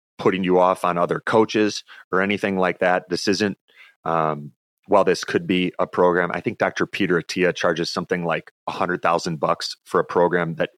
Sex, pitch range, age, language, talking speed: male, 85-100 Hz, 30-49, English, 190 wpm